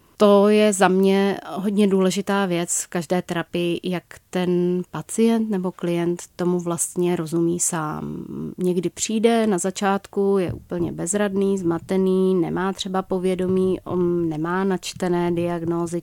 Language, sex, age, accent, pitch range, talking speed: Czech, female, 30-49, native, 170-195 Hz, 125 wpm